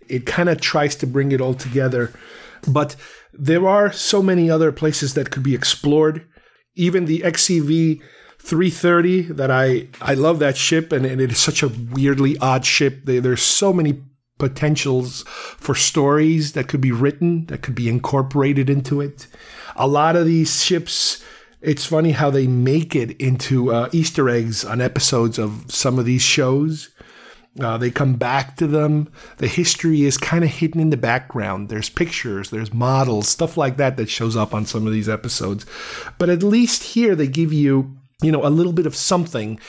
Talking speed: 185 wpm